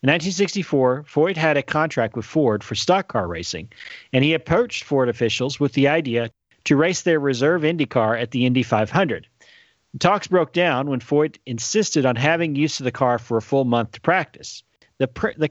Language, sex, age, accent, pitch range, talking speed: English, male, 40-59, American, 115-155 Hz, 195 wpm